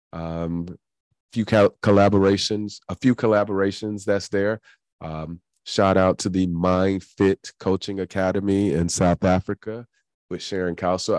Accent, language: American, English